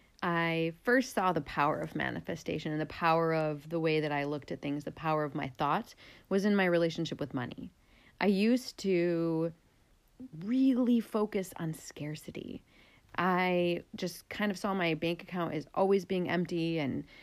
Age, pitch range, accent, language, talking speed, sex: 30-49, 160-205 Hz, American, English, 170 wpm, female